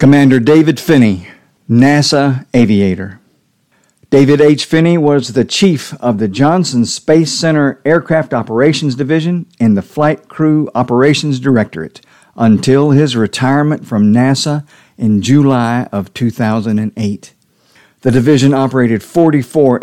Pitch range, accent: 115-150 Hz, American